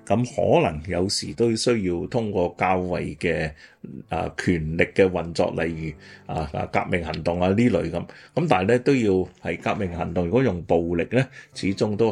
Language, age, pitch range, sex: Chinese, 30-49, 85-110 Hz, male